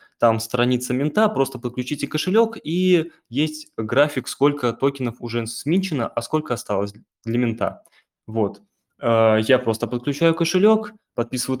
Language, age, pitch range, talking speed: Russian, 20-39, 115-150 Hz, 125 wpm